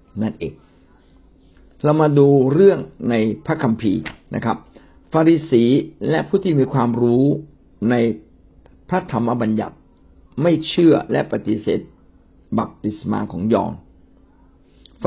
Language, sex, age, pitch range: Thai, male, 60-79, 90-145 Hz